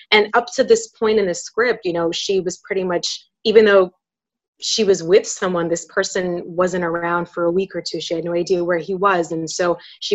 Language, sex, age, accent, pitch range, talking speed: English, female, 20-39, American, 170-210 Hz, 230 wpm